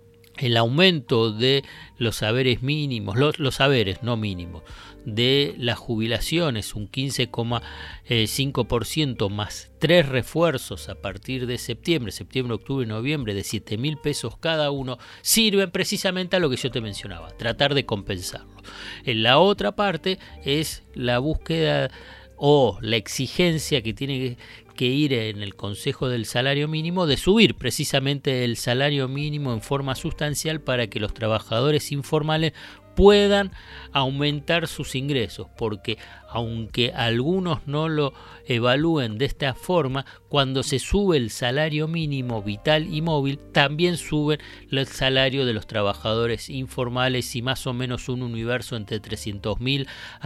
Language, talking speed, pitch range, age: Spanish, 140 wpm, 110-145 Hz, 50-69